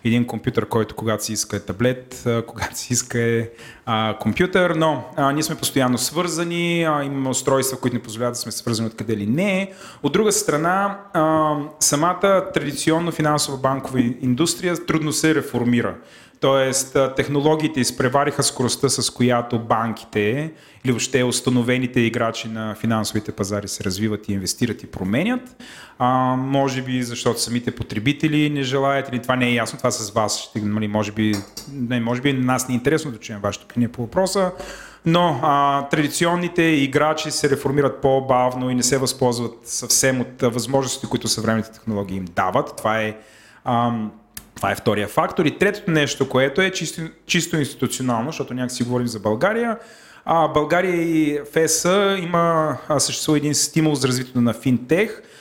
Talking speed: 155 wpm